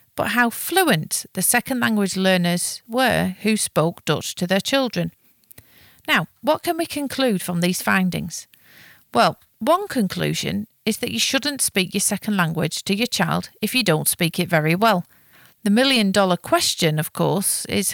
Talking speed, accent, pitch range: 165 wpm, British, 175-240 Hz